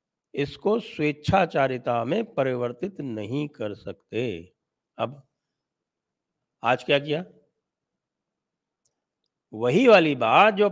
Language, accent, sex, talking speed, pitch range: English, Indian, male, 90 wpm, 135-160 Hz